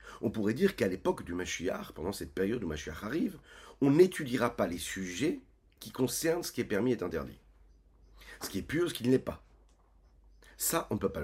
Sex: male